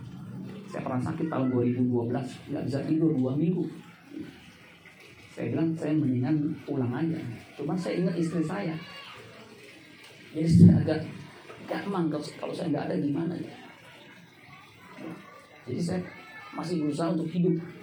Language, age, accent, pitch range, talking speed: Indonesian, 40-59, native, 145-175 Hz, 125 wpm